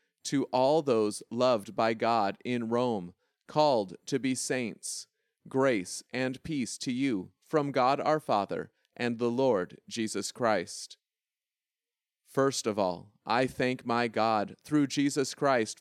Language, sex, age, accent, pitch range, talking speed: English, male, 40-59, American, 120-145 Hz, 135 wpm